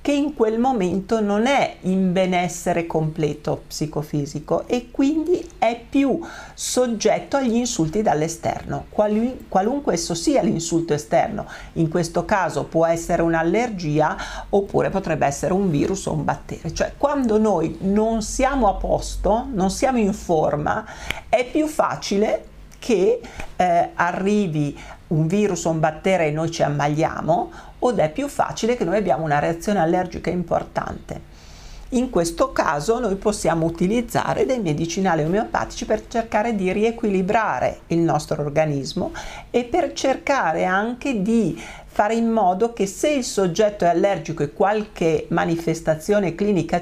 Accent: native